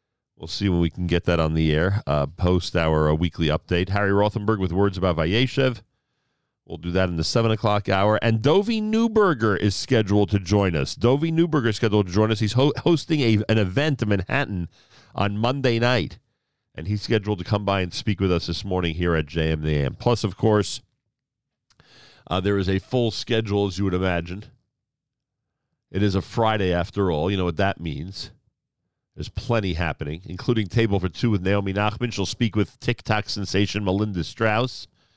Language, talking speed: English, 190 wpm